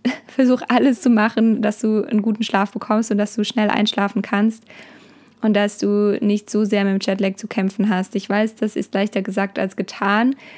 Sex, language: female, German